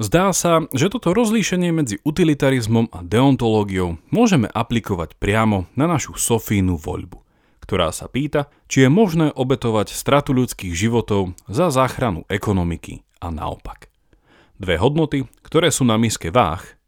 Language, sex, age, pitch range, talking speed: Slovak, male, 40-59, 95-140 Hz, 135 wpm